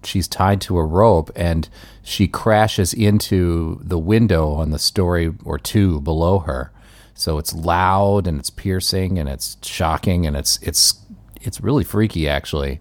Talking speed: 160 wpm